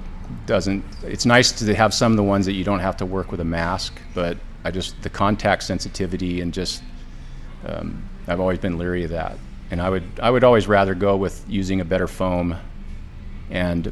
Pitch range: 85-100 Hz